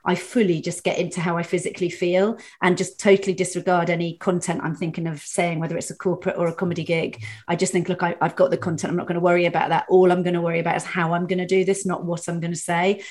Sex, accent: female, British